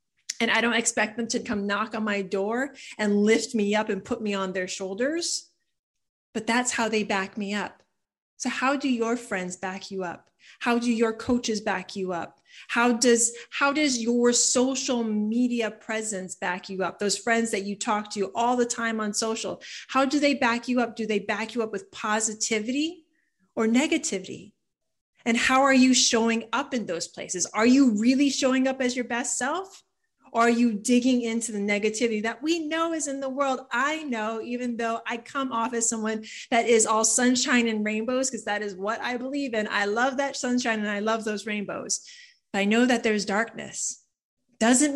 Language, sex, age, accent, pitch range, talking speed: English, female, 30-49, American, 210-255 Hz, 200 wpm